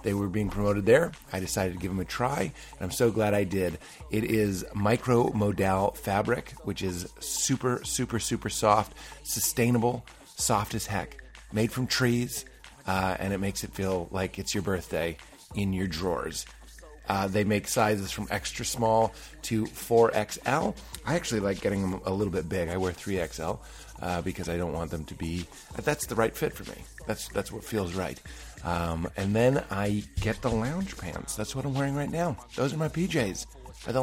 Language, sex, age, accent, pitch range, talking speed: English, male, 30-49, American, 95-125 Hz, 190 wpm